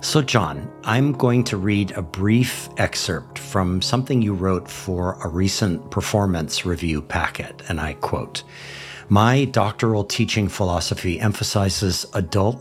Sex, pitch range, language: male, 90-110 Hz, English